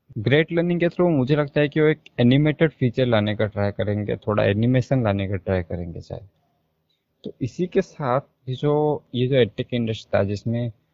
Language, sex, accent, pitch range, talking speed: Hindi, male, native, 110-140 Hz, 55 wpm